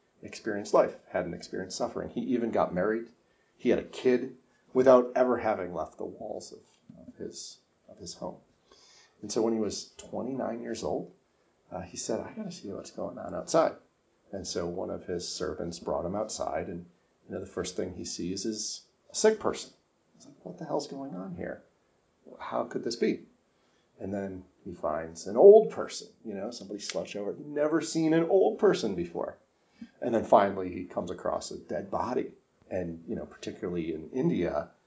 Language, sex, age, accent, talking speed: English, male, 40-59, American, 185 wpm